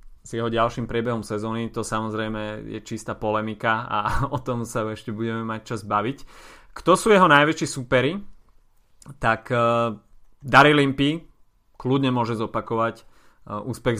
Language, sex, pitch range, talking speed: Slovak, male, 105-120 Hz, 140 wpm